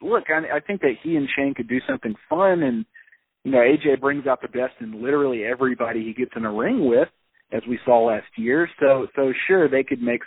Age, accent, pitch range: 40-59, American, 115-145 Hz